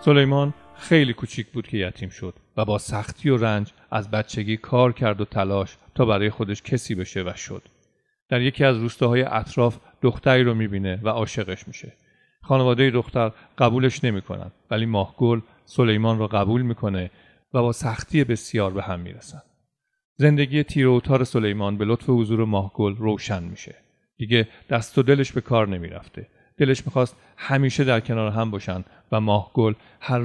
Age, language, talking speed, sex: 40-59, Persian, 160 wpm, male